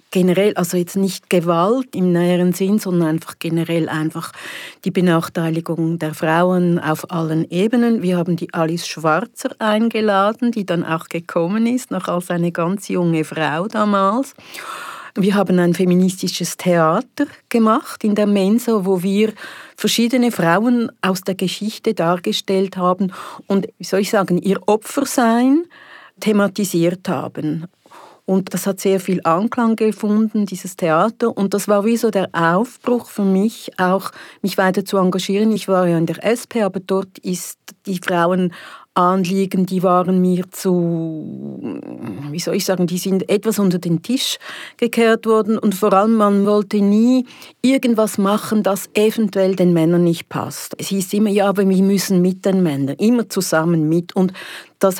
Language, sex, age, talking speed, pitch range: French, female, 60-79, 155 wpm, 175-210 Hz